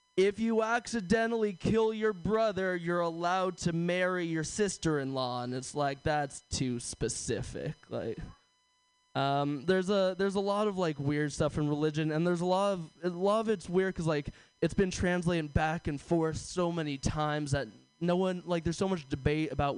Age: 20-39